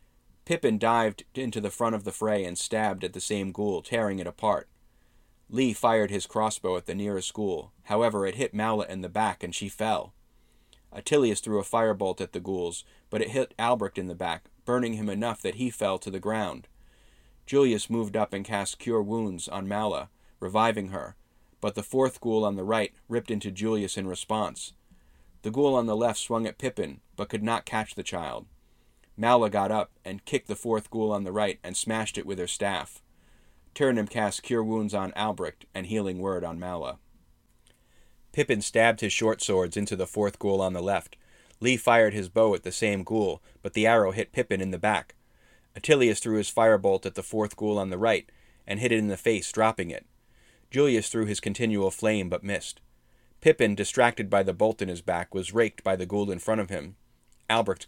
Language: English